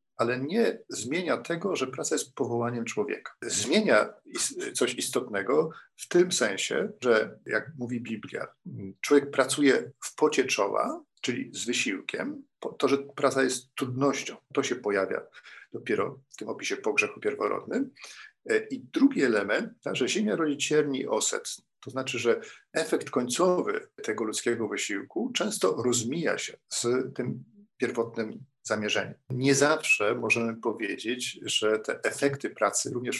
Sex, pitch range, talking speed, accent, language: male, 120-150 Hz, 135 wpm, native, Polish